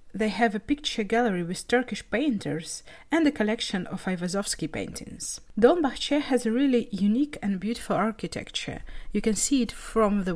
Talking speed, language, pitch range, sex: 160 wpm, Russian, 190-235 Hz, female